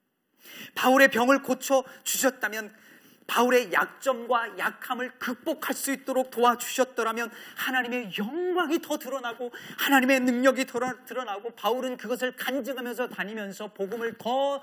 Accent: native